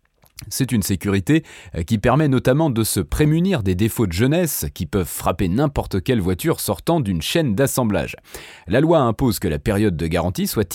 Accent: French